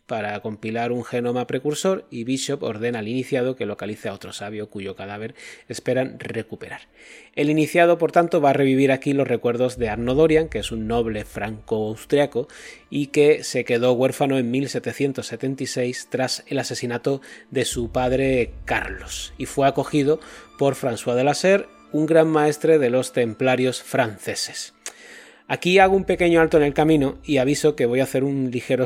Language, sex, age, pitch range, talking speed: Spanish, male, 30-49, 115-140 Hz, 170 wpm